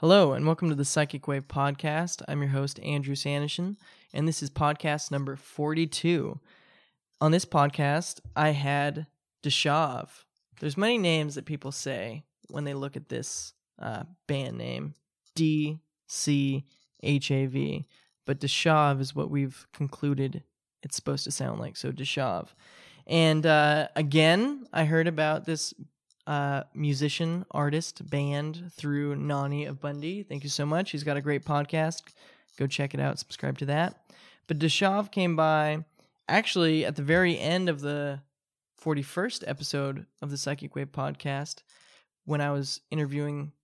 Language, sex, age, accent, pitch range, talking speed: English, male, 10-29, American, 140-160 Hz, 150 wpm